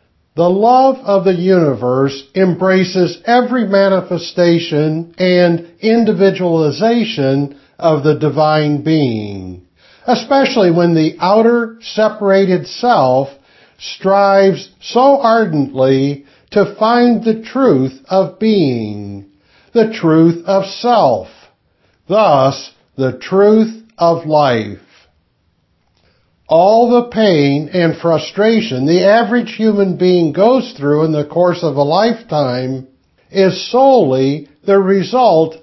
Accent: American